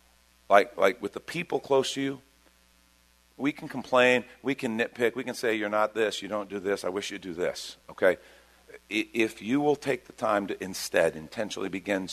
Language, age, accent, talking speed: English, 50-69, American, 200 wpm